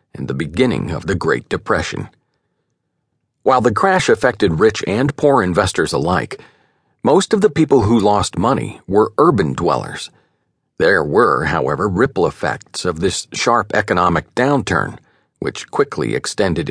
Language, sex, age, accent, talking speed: English, male, 50-69, American, 140 wpm